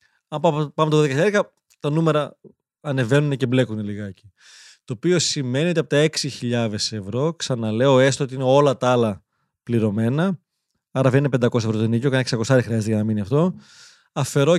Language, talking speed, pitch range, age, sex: Greek, 170 wpm, 120-165 Hz, 20-39, male